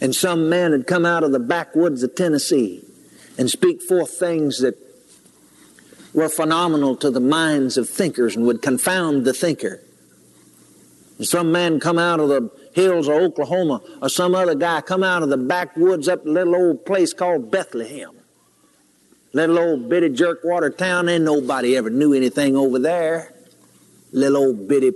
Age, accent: 60-79, American